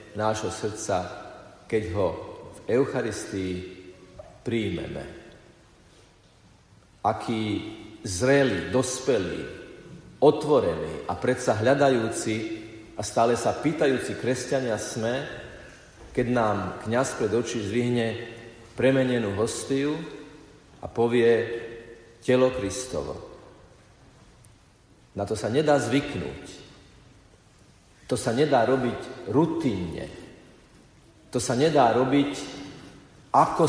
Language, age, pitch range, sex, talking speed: Slovak, 50-69, 110-140 Hz, male, 85 wpm